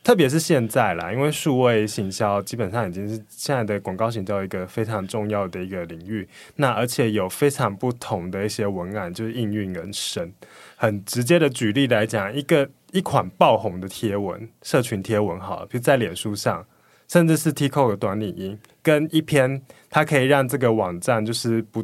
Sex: male